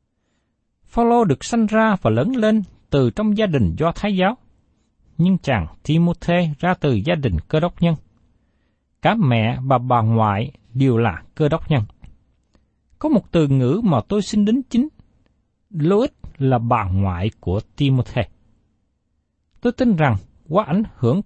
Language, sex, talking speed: Vietnamese, male, 155 wpm